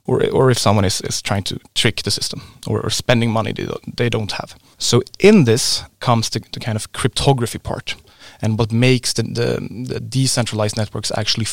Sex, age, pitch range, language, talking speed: male, 30-49, 110-130 Hz, English, 205 wpm